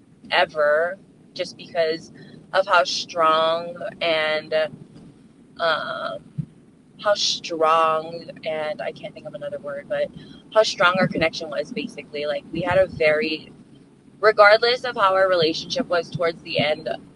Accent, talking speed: American, 135 wpm